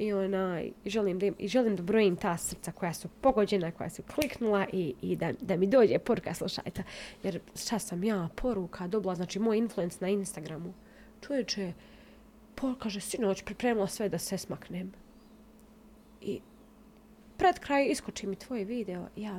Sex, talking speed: female, 155 wpm